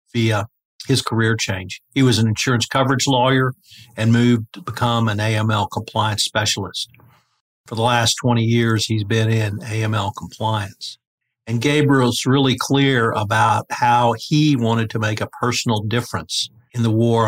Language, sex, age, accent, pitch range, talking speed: English, male, 50-69, American, 110-120 Hz, 155 wpm